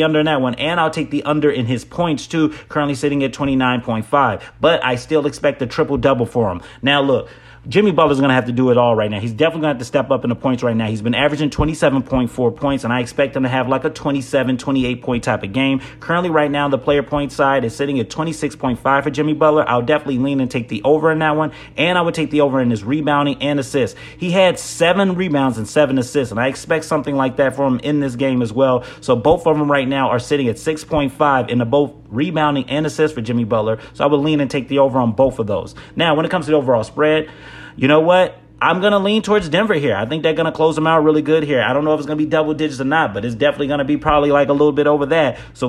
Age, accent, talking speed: 30-49, American, 270 wpm